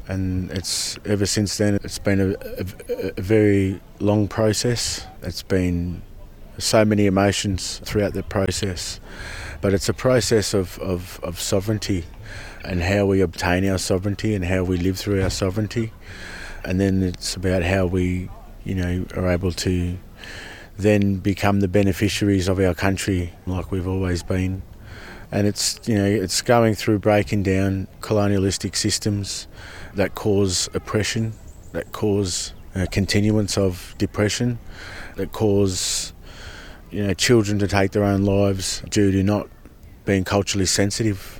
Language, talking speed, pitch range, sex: English, 145 wpm, 90-105 Hz, male